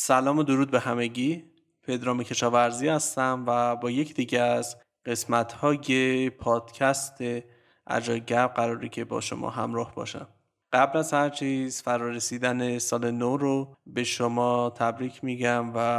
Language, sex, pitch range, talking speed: Persian, male, 120-140 Hz, 135 wpm